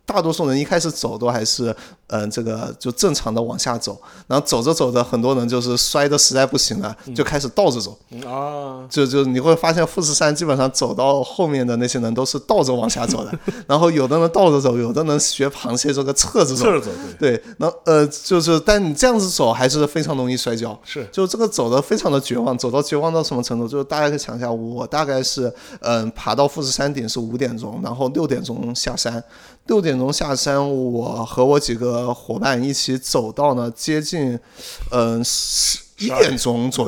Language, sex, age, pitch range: Chinese, male, 30-49, 120-155 Hz